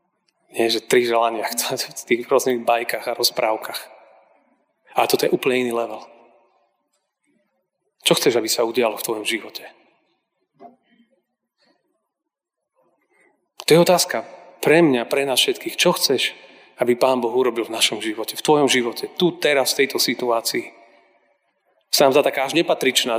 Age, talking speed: 30-49, 140 wpm